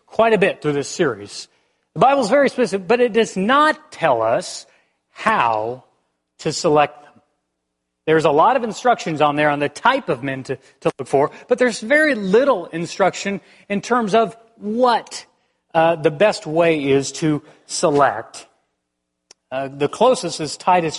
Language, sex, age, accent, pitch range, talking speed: English, male, 40-59, American, 140-205 Hz, 165 wpm